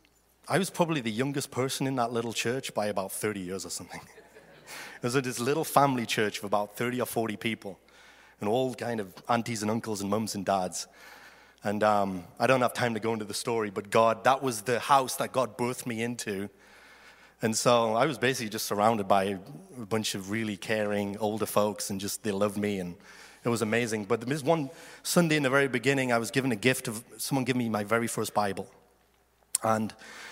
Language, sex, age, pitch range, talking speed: English, male, 30-49, 110-135 Hz, 215 wpm